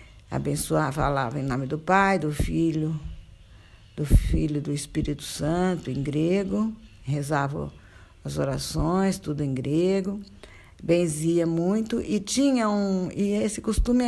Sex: female